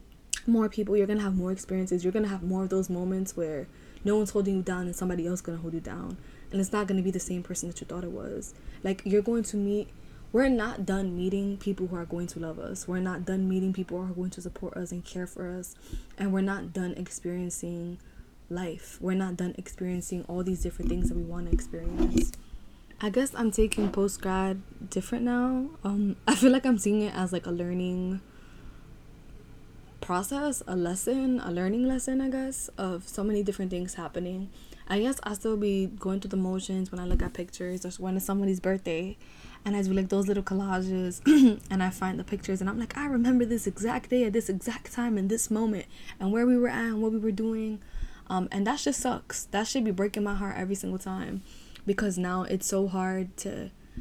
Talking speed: 220 wpm